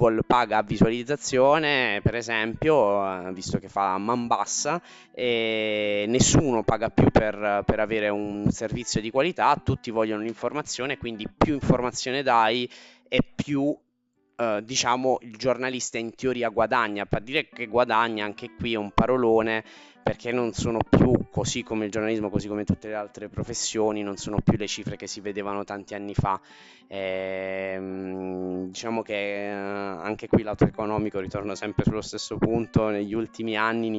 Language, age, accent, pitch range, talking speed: Italian, 20-39, native, 100-120 Hz, 155 wpm